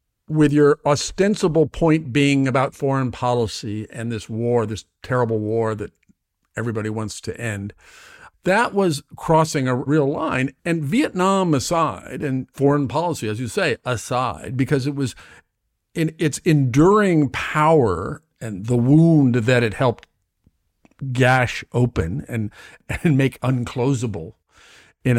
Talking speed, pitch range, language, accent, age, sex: 130 wpm, 115-150 Hz, English, American, 50-69, male